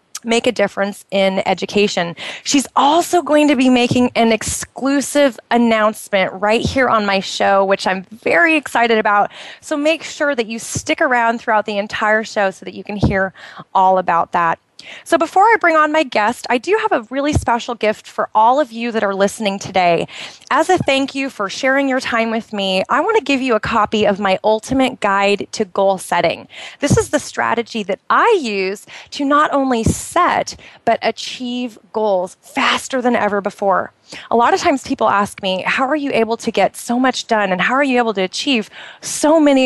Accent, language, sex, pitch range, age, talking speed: American, English, female, 200-260 Hz, 20-39, 200 wpm